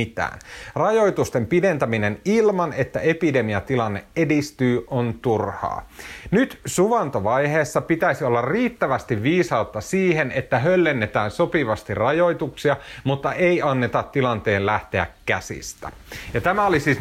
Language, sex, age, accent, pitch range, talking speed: Finnish, male, 30-49, native, 110-150 Hz, 100 wpm